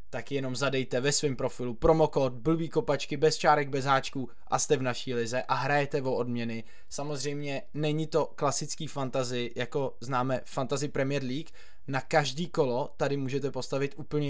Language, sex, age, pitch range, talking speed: Czech, male, 20-39, 125-150 Hz, 165 wpm